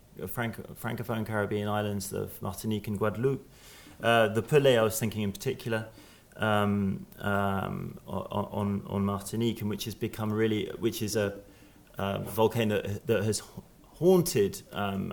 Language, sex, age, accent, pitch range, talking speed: English, male, 30-49, British, 95-110 Hz, 135 wpm